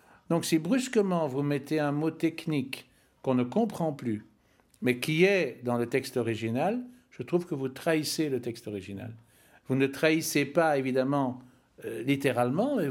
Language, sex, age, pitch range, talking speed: French, male, 60-79, 125-165 Hz, 165 wpm